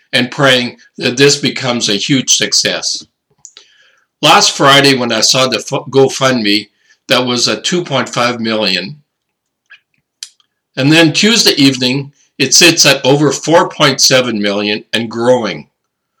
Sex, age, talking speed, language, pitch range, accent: male, 60-79, 120 wpm, English, 125-155 Hz, American